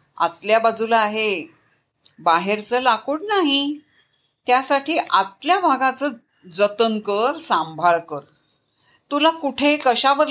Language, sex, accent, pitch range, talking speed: Marathi, female, native, 190-275 Hz, 95 wpm